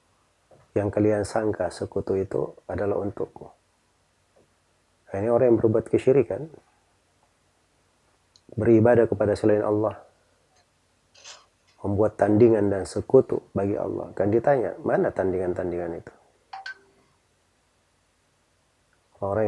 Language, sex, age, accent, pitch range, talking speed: Indonesian, male, 30-49, native, 95-110 Hz, 90 wpm